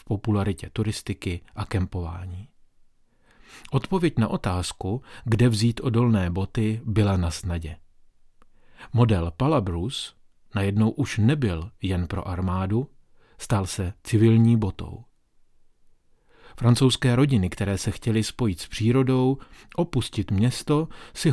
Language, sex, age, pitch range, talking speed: Czech, male, 40-59, 100-125 Hz, 105 wpm